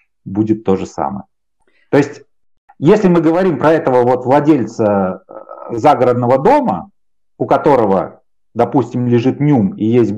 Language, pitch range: Russian, 115-180 Hz